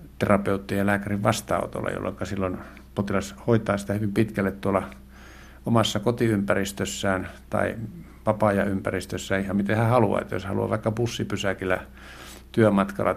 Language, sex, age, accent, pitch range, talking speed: Finnish, male, 60-79, native, 95-110 Hz, 125 wpm